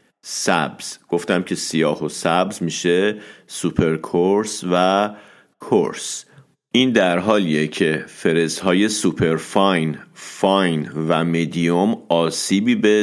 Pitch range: 85-110 Hz